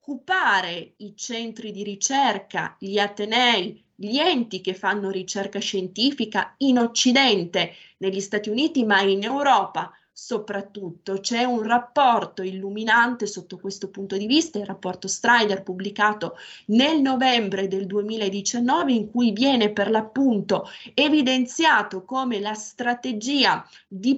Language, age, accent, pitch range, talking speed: Italian, 20-39, native, 195-240 Hz, 120 wpm